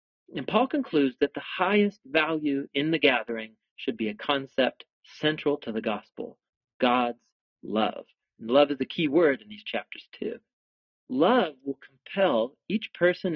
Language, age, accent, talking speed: English, 40-59, American, 155 wpm